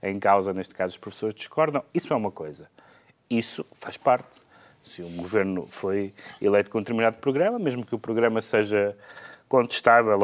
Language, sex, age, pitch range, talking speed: Portuguese, male, 30-49, 110-155 Hz, 175 wpm